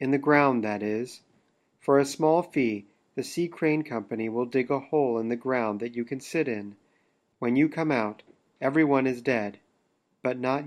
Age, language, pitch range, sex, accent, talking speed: 40-59, English, 115-150 Hz, male, American, 190 wpm